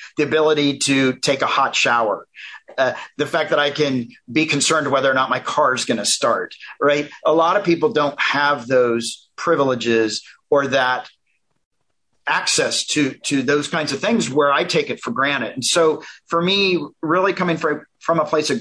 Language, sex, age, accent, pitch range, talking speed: English, male, 40-59, American, 135-165 Hz, 190 wpm